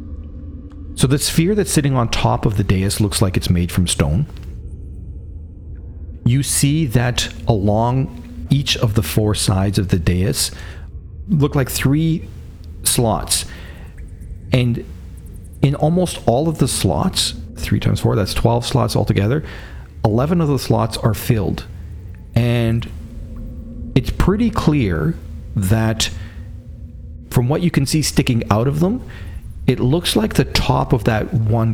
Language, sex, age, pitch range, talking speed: English, male, 40-59, 85-120 Hz, 140 wpm